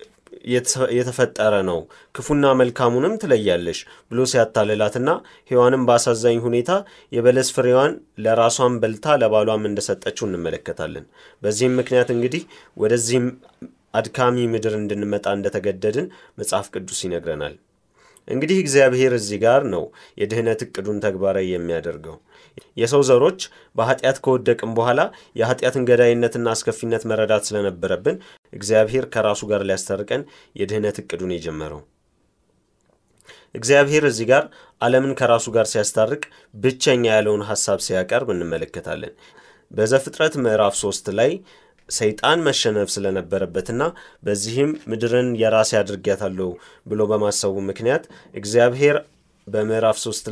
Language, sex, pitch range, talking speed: Amharic, male, 105-130 Hz, 100 wpm